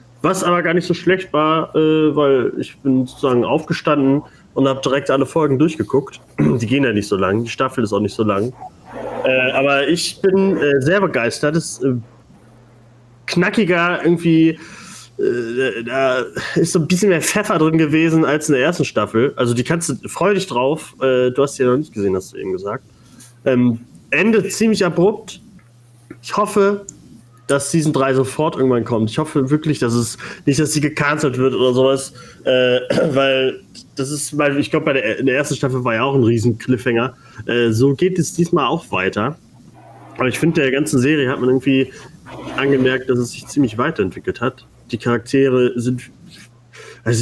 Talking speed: 185 wpm